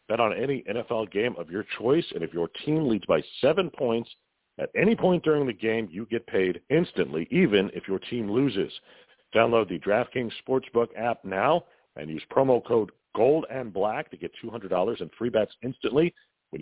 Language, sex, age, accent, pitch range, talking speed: English, male, 40-59, American, 115-180 Hz, 180 wpm